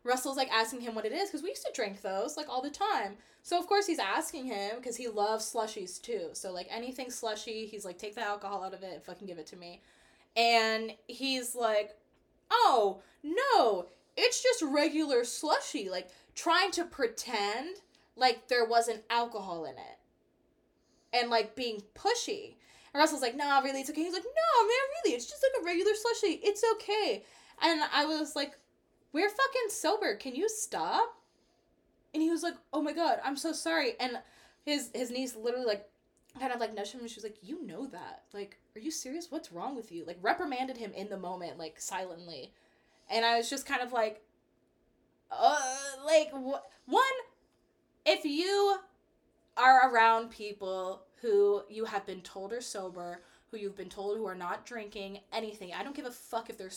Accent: American